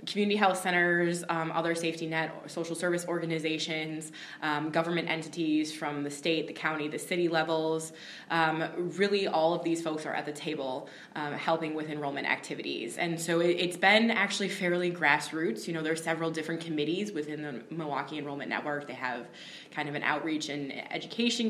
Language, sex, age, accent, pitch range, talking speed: English, female, 20-39, American, 155-180 Hz, 180 wpm